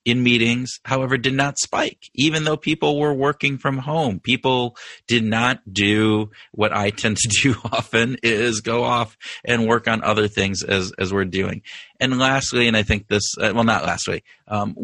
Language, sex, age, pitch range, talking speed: English, male, 30-49, 100-120 Hz, 180 wpm